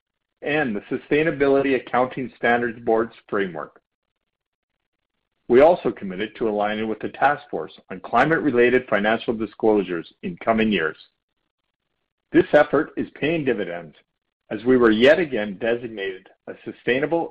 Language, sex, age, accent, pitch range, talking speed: English, male, 50-69, American, 110-135 Hz, 125 wpm